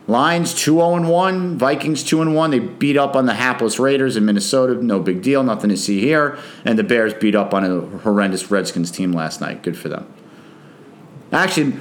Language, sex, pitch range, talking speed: English, male, 120-170 Hz, 200 wpm